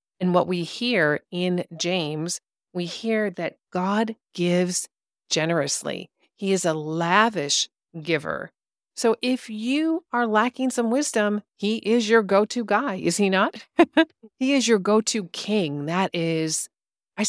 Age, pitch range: 40-59, 165-215 Hz